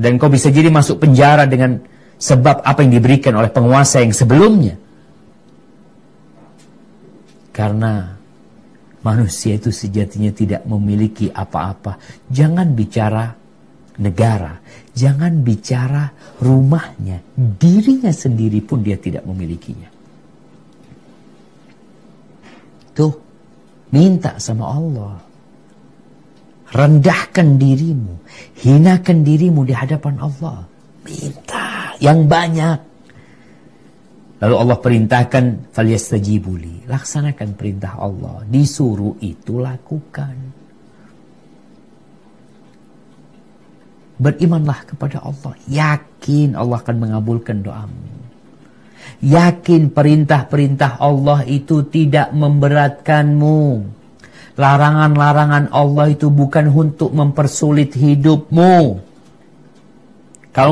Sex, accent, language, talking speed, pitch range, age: male, native, Indonesian, 80 wpm, 110-150 Hz, 50-69